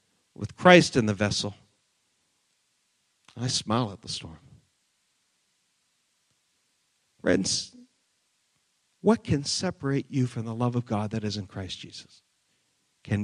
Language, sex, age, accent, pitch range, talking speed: English, male, 50-69, American, 110-160 Hz, 120 wpm